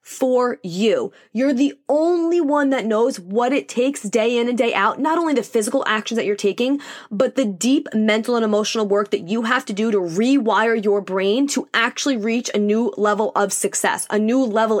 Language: English